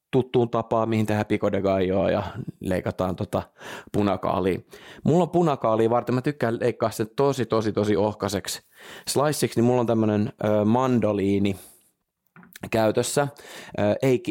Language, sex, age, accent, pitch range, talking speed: Finnish, male, 20-39, native, 100-125 Hz, 120 wpm